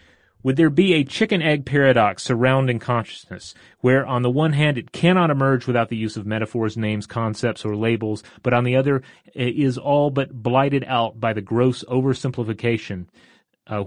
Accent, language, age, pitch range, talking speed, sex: American, English, 30-49, 110-135 Hz, 175 wpm, male